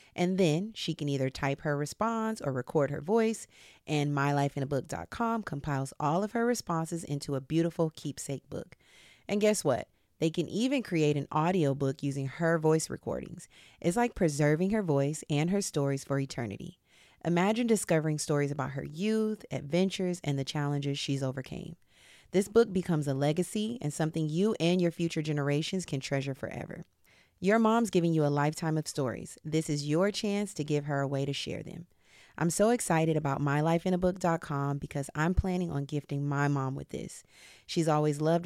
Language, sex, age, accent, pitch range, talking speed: English, female, 30-49, American, 140-185 Hz, 175 wpm